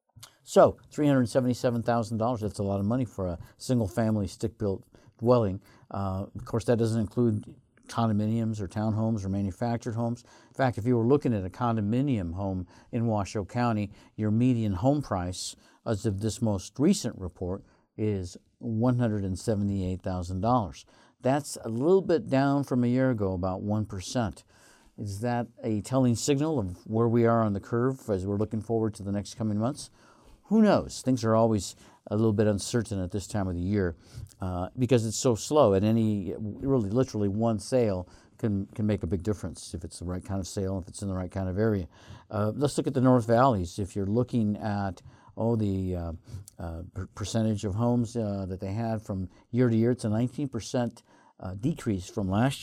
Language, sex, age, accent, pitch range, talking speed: English, male, 50-69, American, 100-120 Hz, 185 wpm